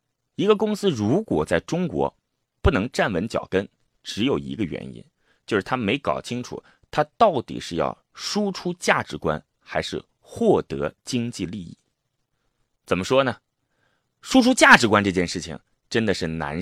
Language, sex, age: Chinese, male, 30-49